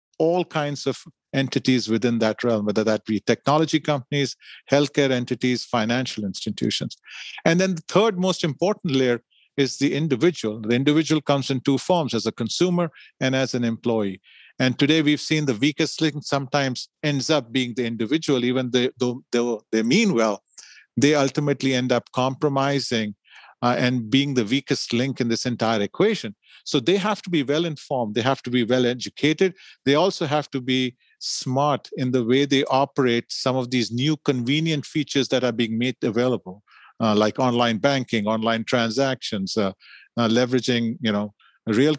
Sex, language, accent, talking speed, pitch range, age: male, English, Indian, 170 wpm, 120-150 Hz, 40-59